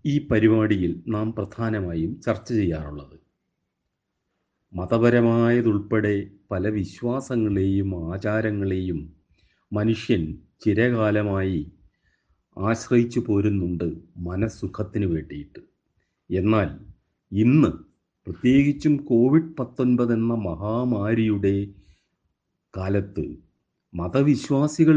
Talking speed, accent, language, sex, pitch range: 60 wpm, native, Malayalam, male, 90-120 Hz